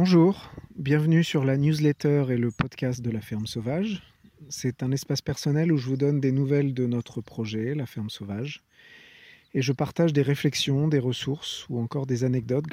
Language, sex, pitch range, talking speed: English, male, 125-150 Hz, 185 wpm